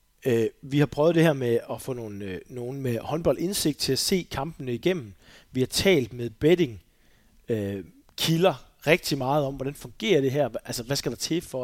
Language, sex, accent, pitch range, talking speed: Danish, male, native, 120-150 Hz, 210 wpm